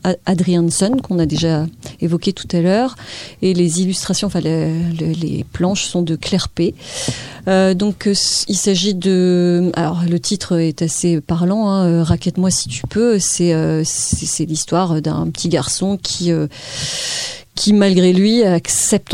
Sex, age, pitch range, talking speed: female, 30-49, 160-185 Hz, 145 wpm